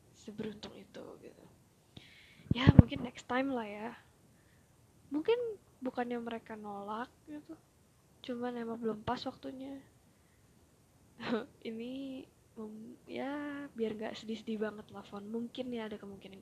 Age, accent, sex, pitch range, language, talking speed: 10-29, native, female, 220-265 Hz, Indonesian, 120 wpm